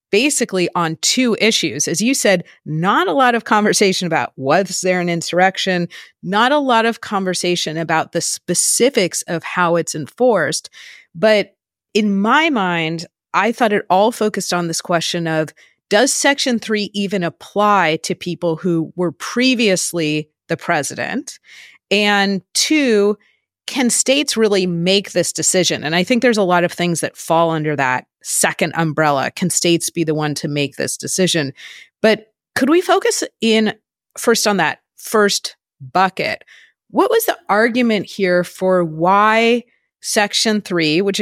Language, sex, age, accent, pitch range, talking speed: English, female, 30-49, American, 170-220 Hz, 155 wpm